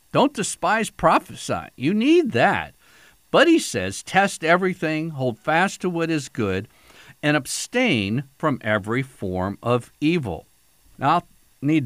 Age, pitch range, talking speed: 50-69, 90-125 Hz, 135 wpm